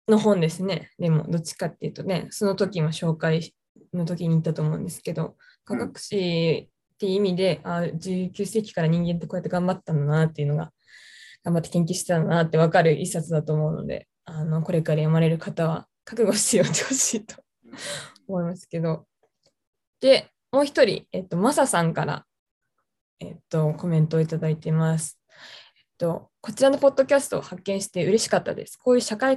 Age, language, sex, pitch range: 20-39, Japanese, female, 170-225 Hz